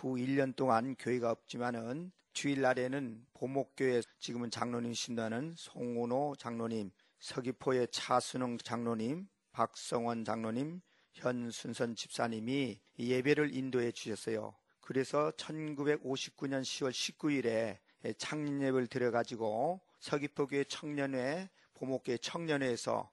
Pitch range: 115-140 Hz